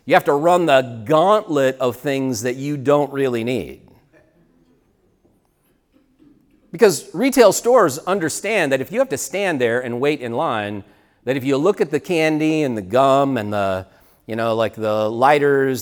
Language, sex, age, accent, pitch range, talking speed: English, male, 40-59, American, 120-170 Hz, 170 wpm